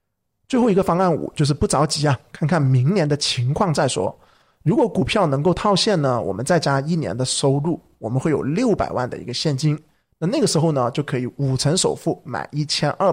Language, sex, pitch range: Chinese, male, 135-170 Hz